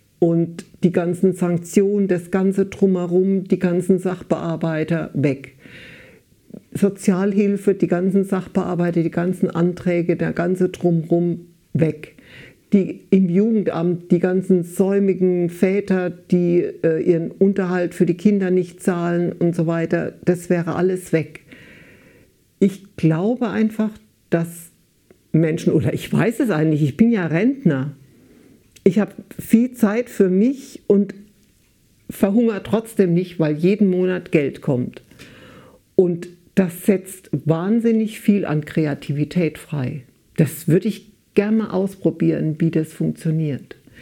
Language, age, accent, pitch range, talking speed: German, 60-79, German, 165-195 Hz, 120 wpm